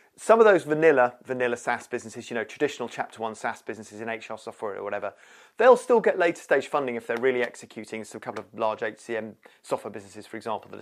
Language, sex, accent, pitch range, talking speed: English, male, British, 110-135 Hz, 220 wpm